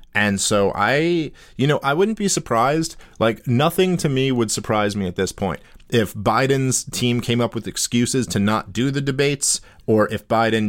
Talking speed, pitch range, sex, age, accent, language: 190 wpm, 100-130 Hz, male, 40-59, American, English